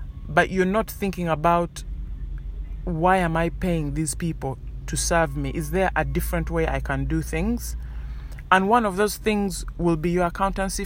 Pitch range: 135-185 Hz